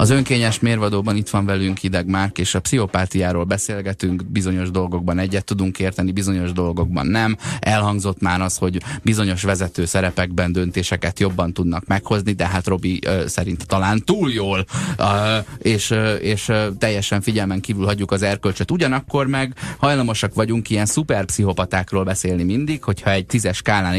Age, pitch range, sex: 30-49, 95-115 Hz, male